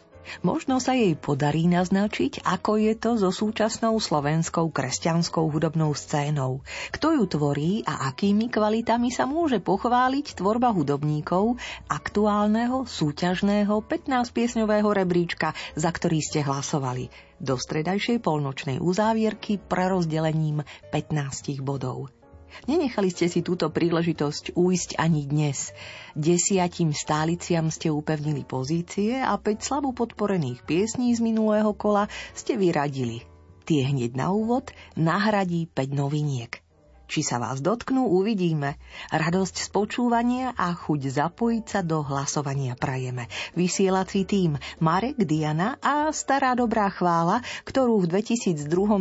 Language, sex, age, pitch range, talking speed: Slovak, female, 40-59, 150-210 Hz, 120 wpm